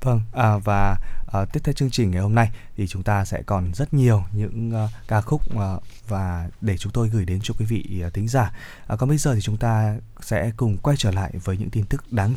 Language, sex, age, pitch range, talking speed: Vietnamese, male, 20-39, 105-135 Hz, 225 wpm